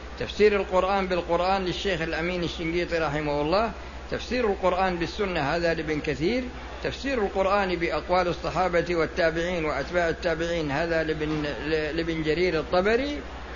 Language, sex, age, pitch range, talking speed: Arabic, male, 50-69, 150-185 Hz, 110 wpm